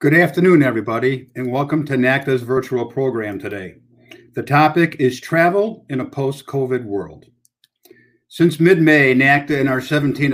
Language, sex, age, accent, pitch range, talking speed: English, male, 50-69, American, 120-145 Hz, 150 wpm